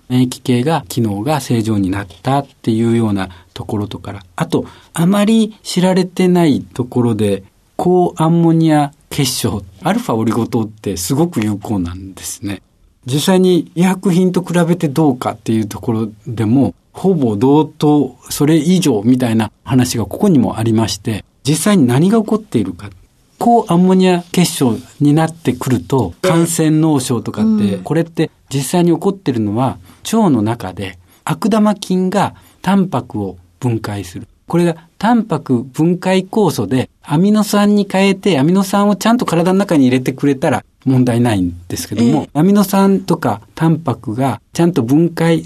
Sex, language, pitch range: male, Japanese, 110-175 Hz